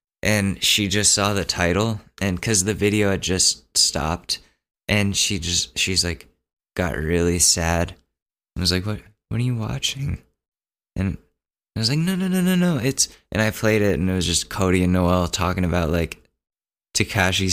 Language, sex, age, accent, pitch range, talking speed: English, male, 20-39, American, 85-105 Hz, 185 wpm